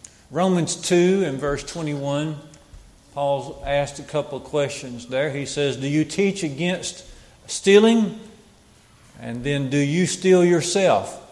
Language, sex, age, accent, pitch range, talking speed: English, male, 40-59, American, 135-165 Hz, 135 wpm